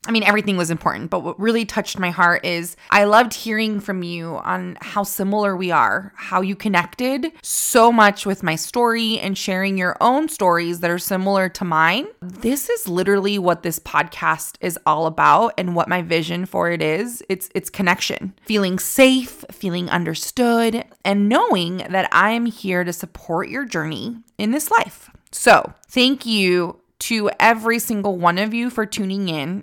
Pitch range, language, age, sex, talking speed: 180-225 Hz, English, 20-39, female, 180 wpm